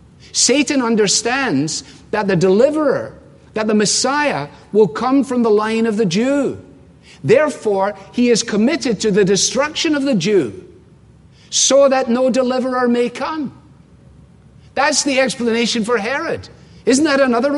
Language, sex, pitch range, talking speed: English, male, 155-245 Hz, 135 wpm